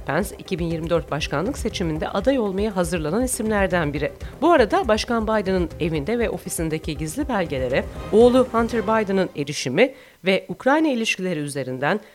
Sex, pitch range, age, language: female, 170-260 Hz, 40-59, Turkish